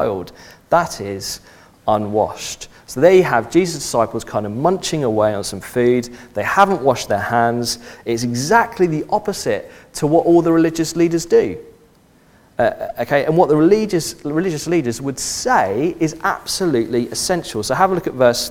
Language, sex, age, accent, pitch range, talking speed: English, male, 40-59, British, 115-175 Hz, 165 wpm